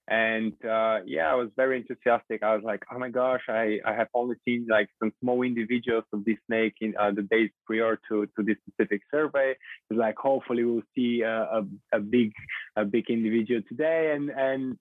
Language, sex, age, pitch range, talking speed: English, male, 20-39, 110-130 Hz, 205 wpm